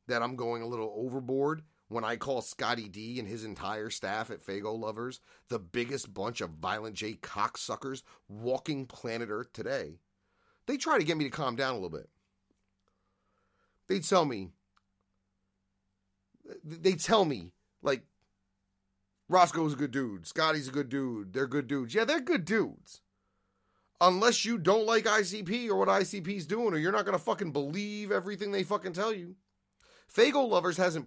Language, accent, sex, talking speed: English, American, male, 165 wpm